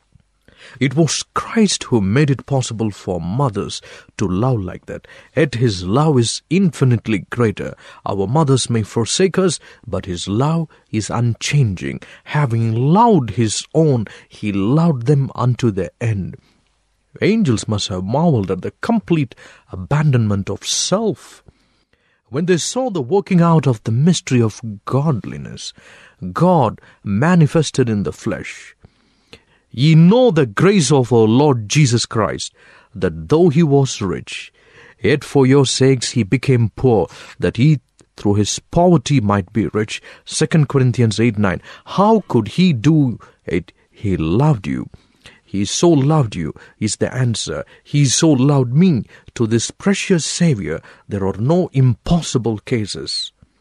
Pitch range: 110-155 Hz